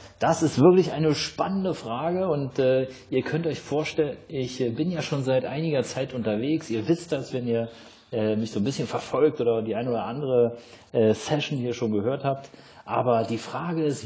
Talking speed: 200 wpm